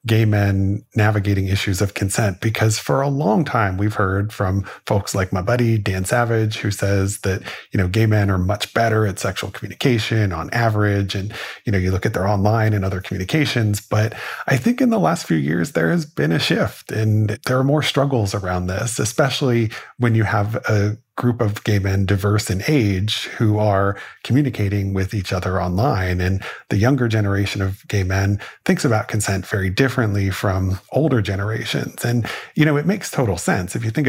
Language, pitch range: English, 100-120 Hz